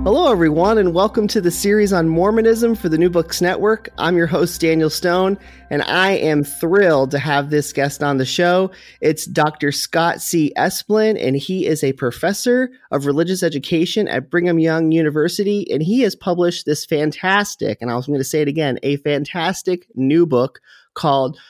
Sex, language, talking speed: male, English, 185 wpm